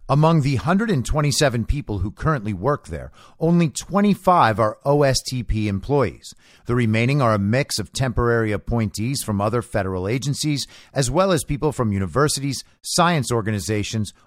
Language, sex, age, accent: English, male, 50-69, American